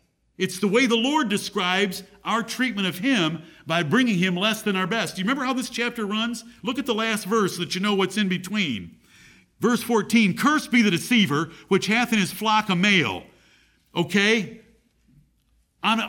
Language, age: English, 50-69